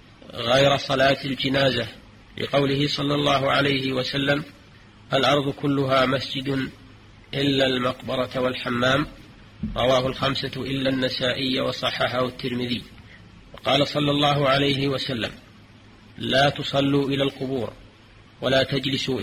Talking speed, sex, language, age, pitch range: 95 wpm, male, Arabic, 40-59, 120-140 Hz